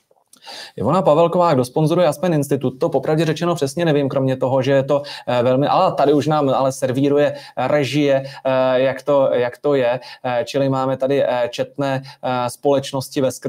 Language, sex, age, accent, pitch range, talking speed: Czech, male, 20-39, native, 115-145 Hz, 150 wpm